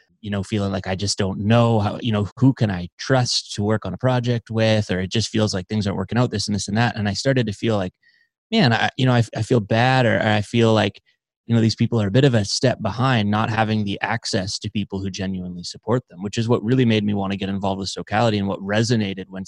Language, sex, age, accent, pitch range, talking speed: English, male, 20-39, American, 100-120 Hz, 275 wpm